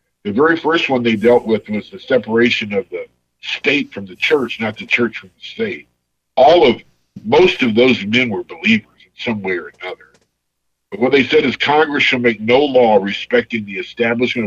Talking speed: 200 wpm